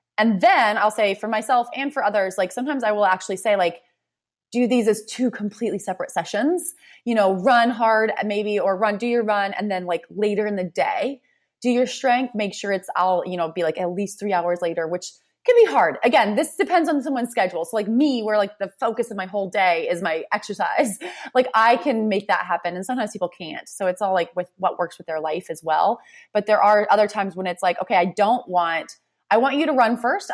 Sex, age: female, 20-39